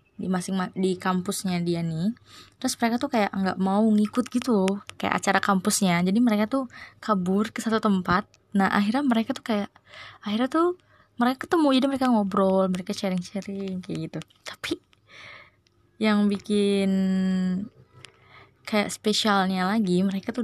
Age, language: 20-39, Indonesian